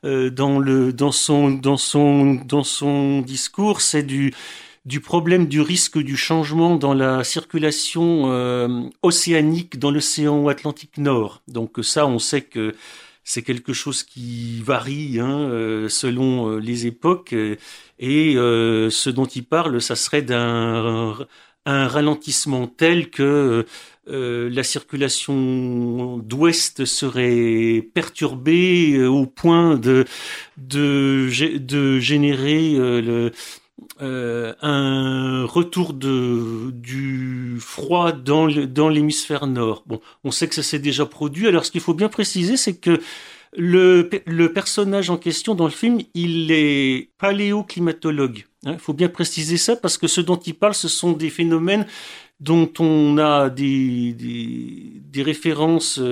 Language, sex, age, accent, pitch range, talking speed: French, male, 50-69, French, 125-160 Hz, 130 wpm